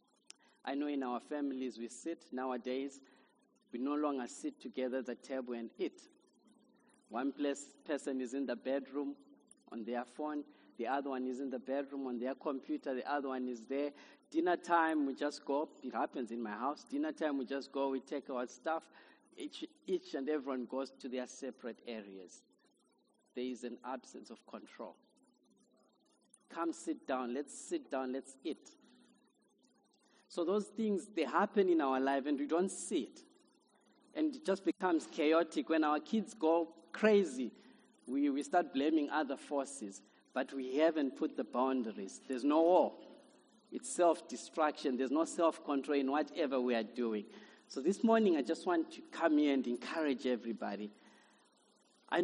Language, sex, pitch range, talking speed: English, male, 130-170 Hz, 170 wpm